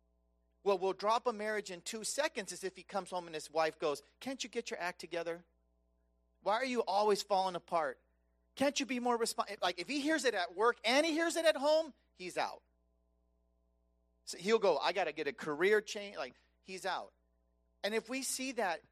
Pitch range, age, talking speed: 150-250 Hz, 40-59, 210 wpm